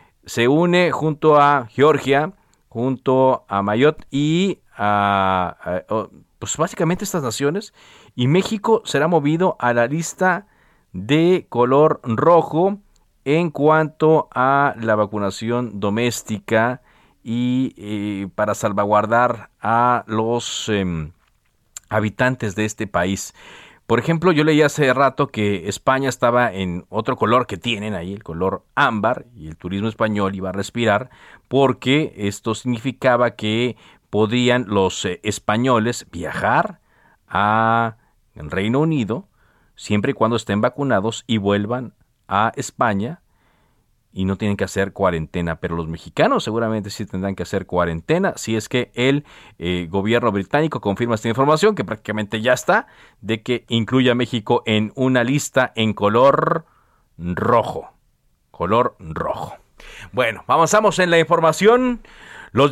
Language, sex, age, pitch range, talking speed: Spanish, male, 40-59, 105-145 Hz, 130 wpm